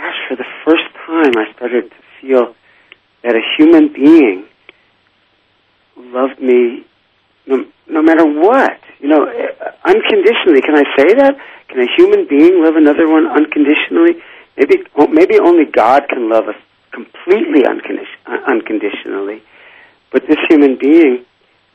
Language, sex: English, male